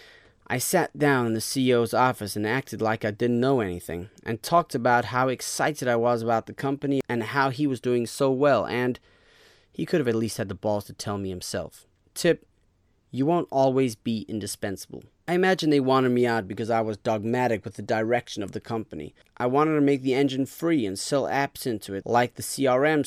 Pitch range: 110-140 Hz